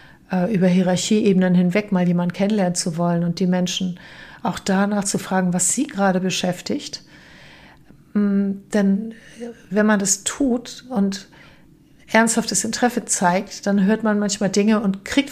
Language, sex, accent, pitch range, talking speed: German, female, German, 185-220 Hz, 135 wpm